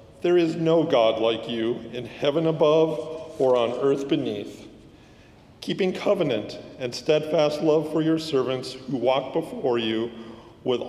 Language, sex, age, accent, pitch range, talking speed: English, male, 40-59, American, 115-150 Hz, 145 wpm